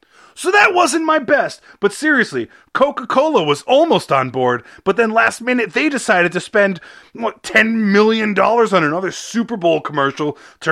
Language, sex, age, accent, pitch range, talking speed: English, male, 30-49, American, 175-295 Hz, 160 wpm